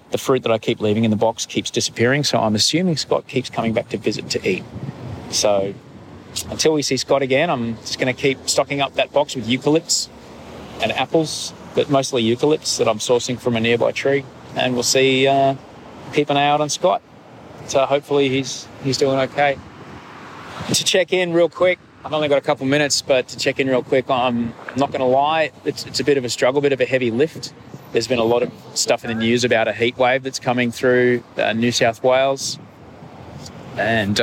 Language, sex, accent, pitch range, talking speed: English, male, Australian, 115-140 Hz, 210 wpm